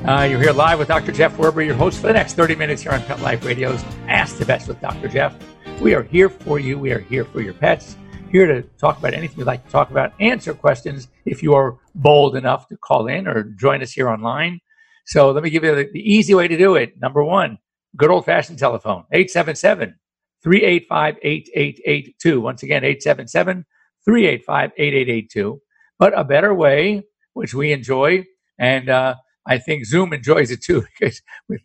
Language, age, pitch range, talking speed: English, 50-69, 135-185 Hz, 195 wpm